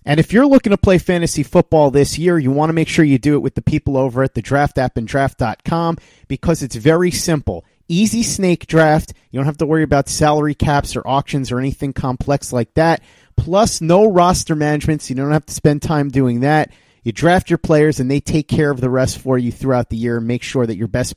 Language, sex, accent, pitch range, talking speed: English, male, American, 130-170 Hz, 240 wpm